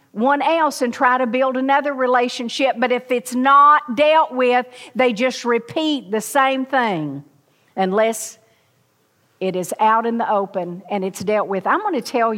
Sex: female